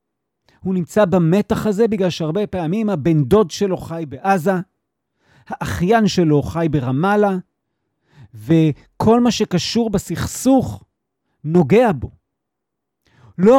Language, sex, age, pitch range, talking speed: Hebrew, male, 40-59, 160-210 Hz, 100 wpm